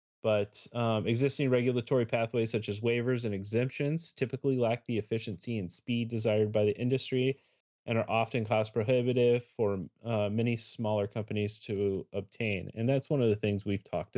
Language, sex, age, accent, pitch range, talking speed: English, male, 30-49, American, 105-125 Hz, 170 wpm